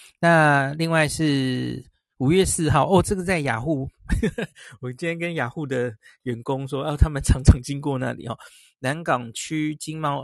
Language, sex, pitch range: Chinese, male, 125-160 Hz